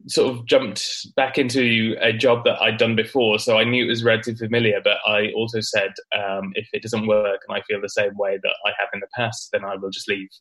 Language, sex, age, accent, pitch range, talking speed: English, male, 20-39, British, 100-120 Hz, 255 wpm